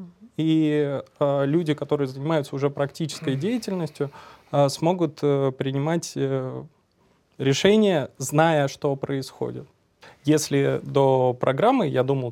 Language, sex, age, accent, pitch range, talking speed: Russian, male, 20-39, native, 135-160 Hz, 105 wpm